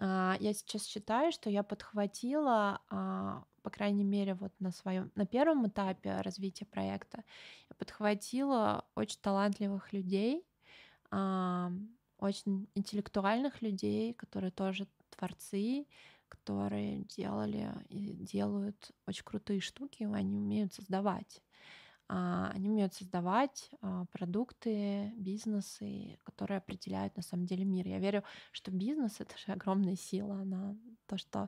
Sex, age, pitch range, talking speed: female, 20-39, 190-210 Hz, 115 wpm